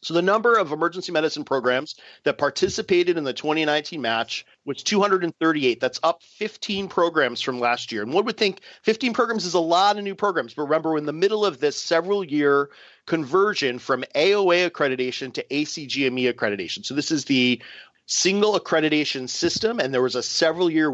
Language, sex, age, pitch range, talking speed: English, male, 40-59, 125-170 Hz, 180 wpm